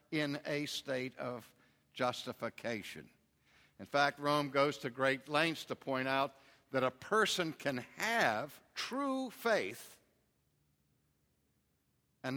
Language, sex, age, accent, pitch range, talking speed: English, male, 60-79, American, 125-165 Hz, 110 wpm